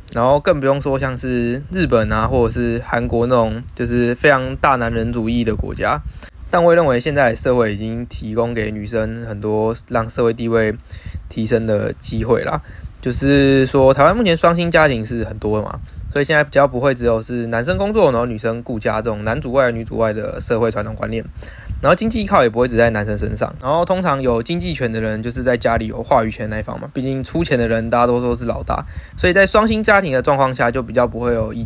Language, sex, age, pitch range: Chinese, male, 20-39, 115-145 Hz